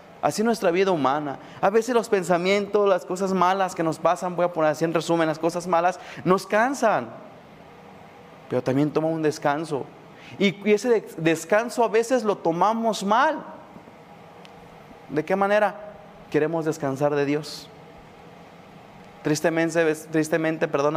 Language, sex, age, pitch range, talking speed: Spanish, male, 30-49, 150-180 Hz, 135 wpm